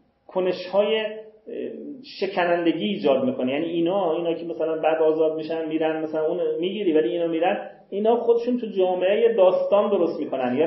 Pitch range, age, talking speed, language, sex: 145-200 Hz, 40-59, 165 wpm, Persian, male